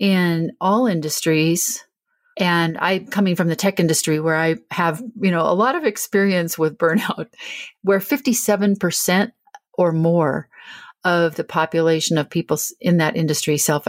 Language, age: English, 40-59